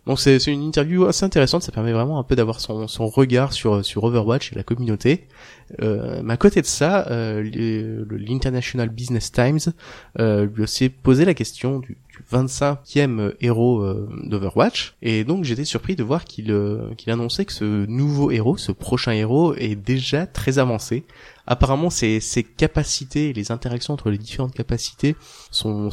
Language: French